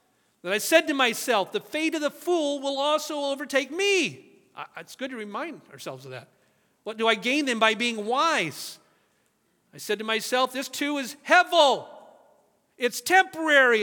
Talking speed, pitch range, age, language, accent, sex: 170 wpm, 185-270 Hz, 40-59, English, American, male